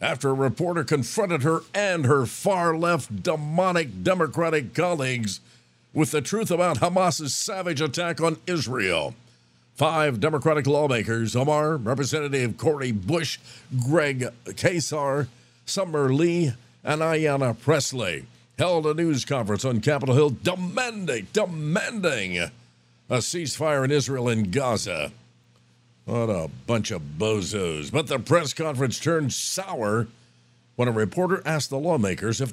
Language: English